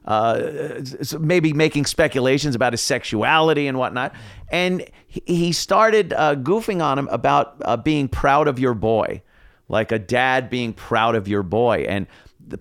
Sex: male